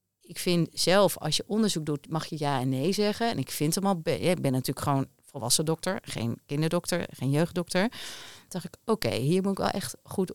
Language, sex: Dutch, female